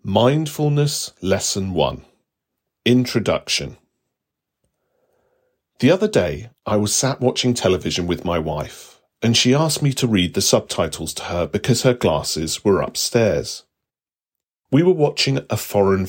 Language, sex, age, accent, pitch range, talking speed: English, male, 40-59, British, 90-135 Hz, 130 wpm